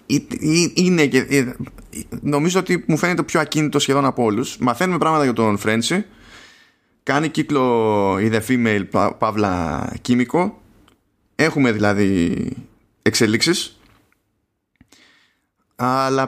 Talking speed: 105 wpm